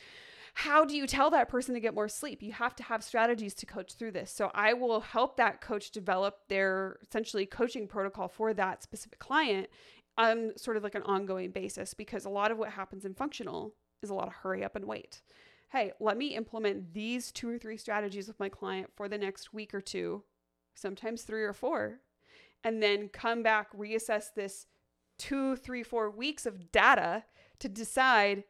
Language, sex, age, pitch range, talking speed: English, female, 30-49, 195-235 Hz, 195 wpm